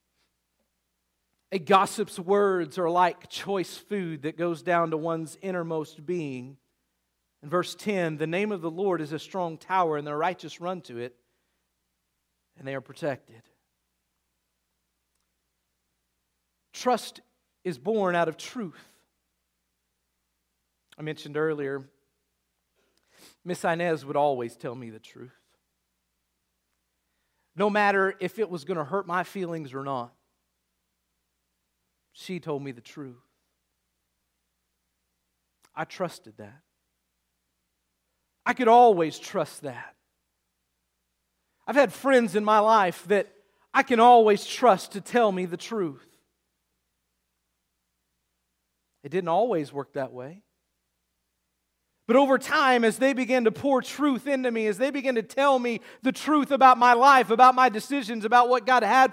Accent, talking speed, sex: American, 130 wpm, male